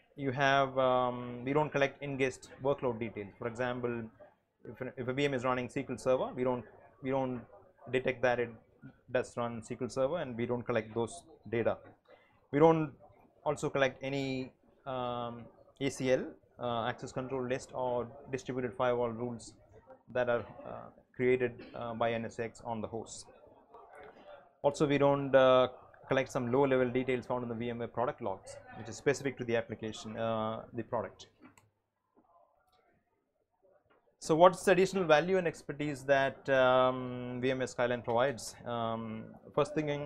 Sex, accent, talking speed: male, Indian, 150 wpm